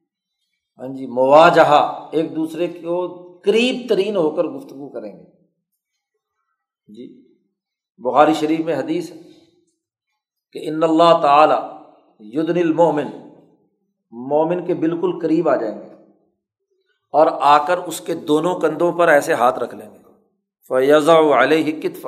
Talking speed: 120 wpm